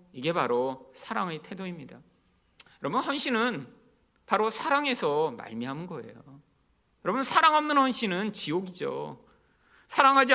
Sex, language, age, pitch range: male, Korean, 40-59, 155-245 Hz